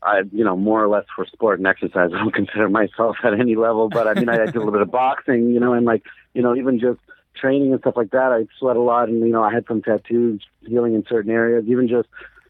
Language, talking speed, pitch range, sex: English, 280 wpm, 105-125 Hz, male